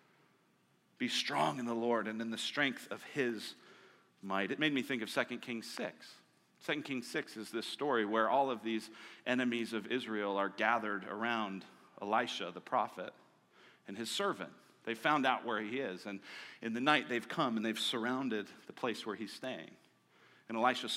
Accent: American